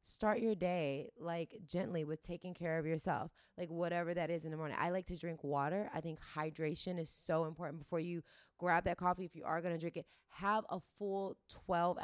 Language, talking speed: English, 220 wpm